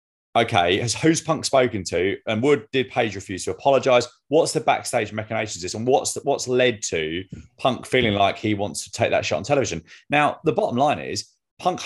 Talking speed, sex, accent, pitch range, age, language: 205 wpm, male, British, 105-145 Hz, 30-49, English